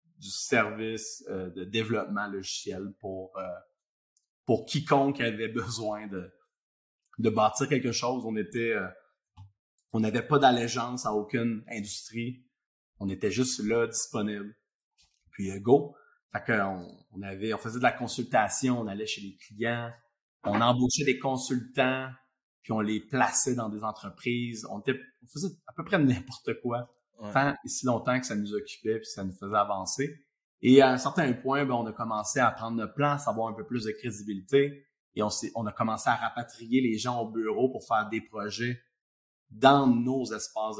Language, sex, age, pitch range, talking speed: French, male, 30-49, 105-125 Hz, 170 wpm